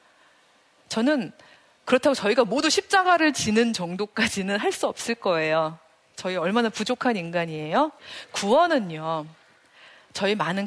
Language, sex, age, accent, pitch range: Korean, female, 40-59, native, 190-290 Hz